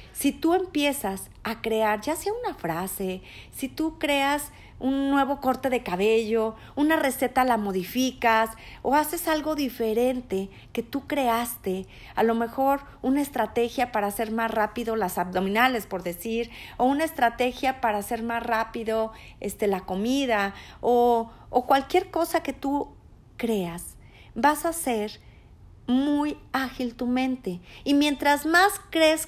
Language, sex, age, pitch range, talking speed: Spanish, female, 40-59, 220-280 Hz, 140 wpm